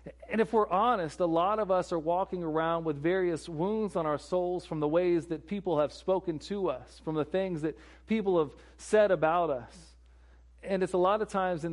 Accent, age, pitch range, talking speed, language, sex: American, 40-59, 130-170 Hz, 215 wpm, English, male